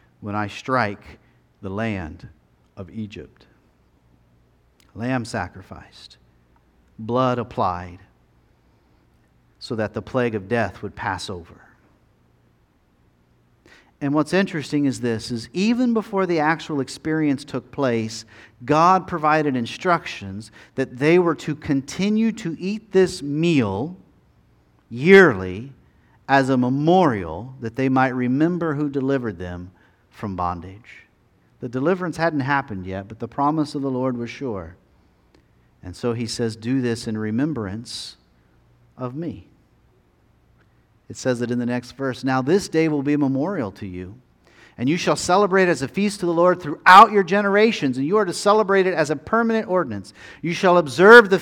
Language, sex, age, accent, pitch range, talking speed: English, male, 50-69, American, 105-165 Hz, 145 wpm